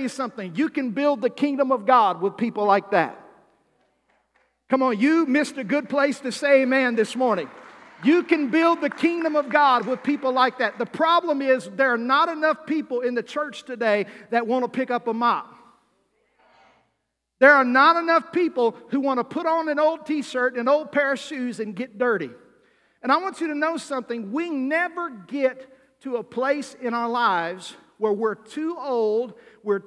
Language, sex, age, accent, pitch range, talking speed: English, male, 50-69, American, 205-275 Hz, 195 wpm